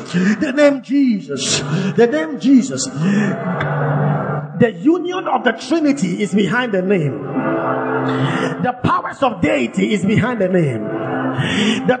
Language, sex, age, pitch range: English, male, 50-69, 200-280 Hz